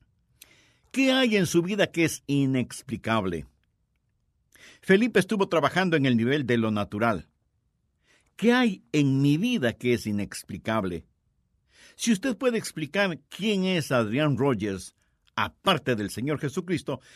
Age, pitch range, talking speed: 60-79, 120-185 Hz, 130 wpm